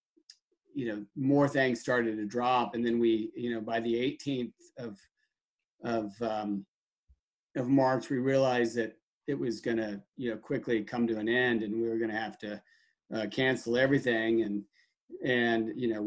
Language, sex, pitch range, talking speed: English, male, 115-130 Hz, 180 wpm